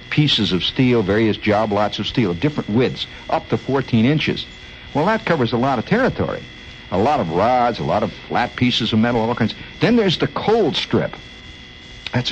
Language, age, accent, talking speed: English, 60-79, American, 200 wpm